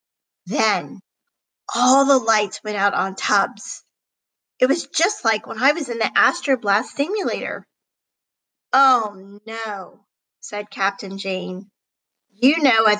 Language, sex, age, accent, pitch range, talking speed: English, female, 40-59, American, 215-280 Hz, 125 wpm